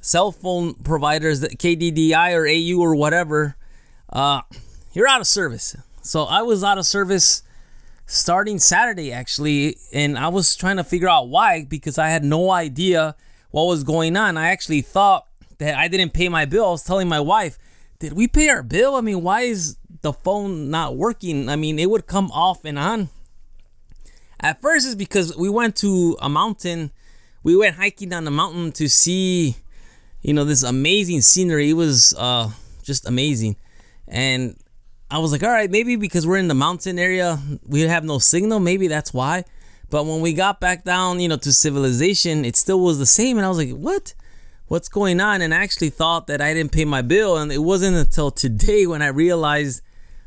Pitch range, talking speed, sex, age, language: 145-185 Hz, 195 wpm, male, 20-39, English